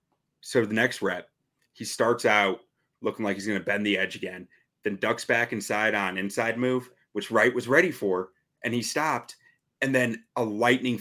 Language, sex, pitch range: English, male, 100-125 Hz